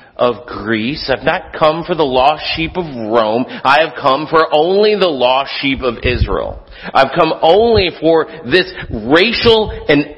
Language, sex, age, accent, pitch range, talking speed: English, male, 50-69, American, 130-195 Hz, 165 wpm